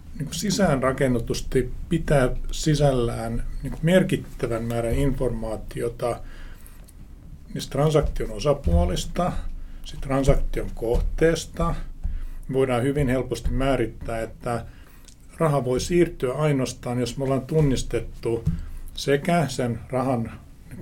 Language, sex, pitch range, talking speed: Finnish, male, 110-140 Hz, 90 wpm